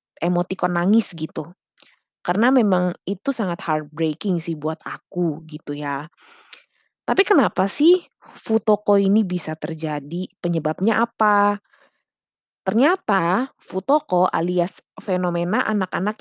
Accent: native